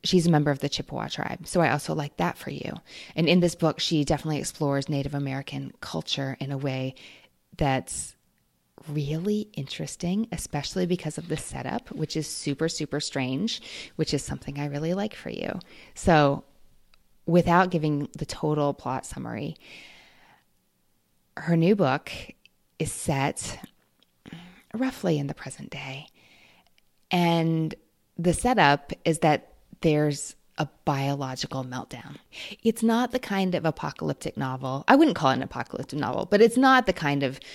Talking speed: 150 wpm